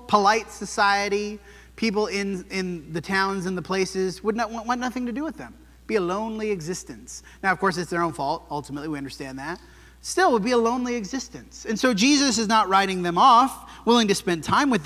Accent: American